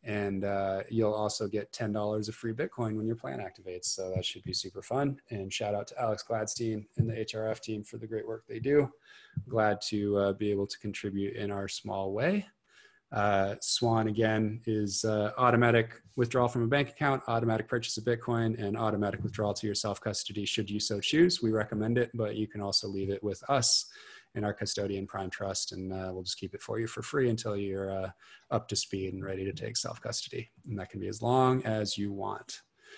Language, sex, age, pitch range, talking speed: English, male, 20-39, 105-125 Hz, 215 wpm